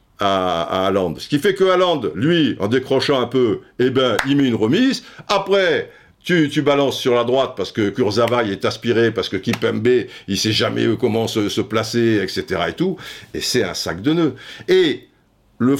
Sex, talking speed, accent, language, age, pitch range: male, 200 wpm, French, French, 60-79, 105-165 Hz